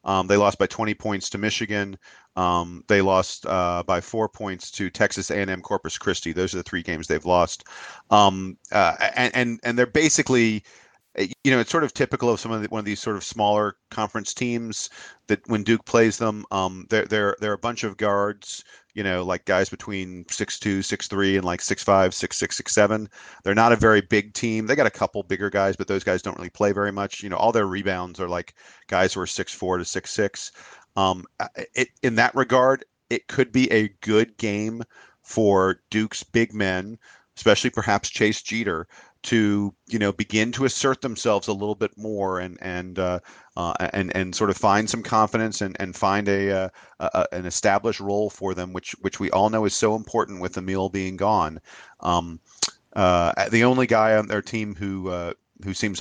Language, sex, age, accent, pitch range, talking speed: English, male, 40-59, American, 95-110 Hz, 195 wpm